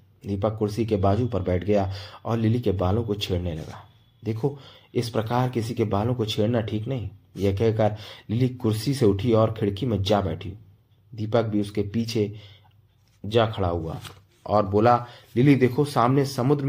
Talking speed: 175 wpm